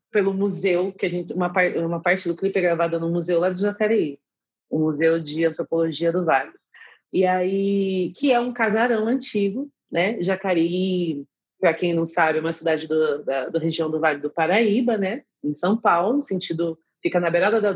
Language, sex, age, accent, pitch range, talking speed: Portuguese, female, 30-49, Brazilian, 165-215 Hz, 190 wpm